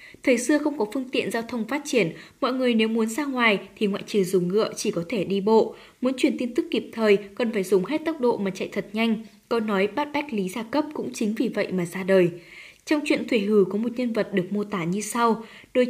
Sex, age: female, 10-29